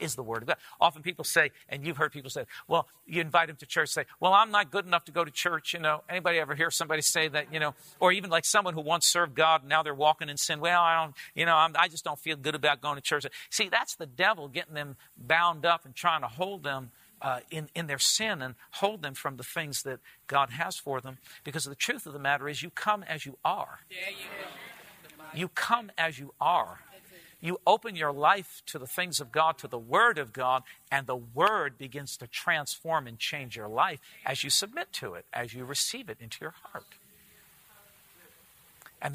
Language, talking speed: English, 230 wpm